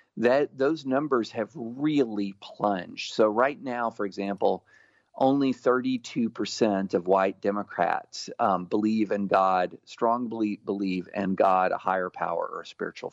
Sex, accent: male, American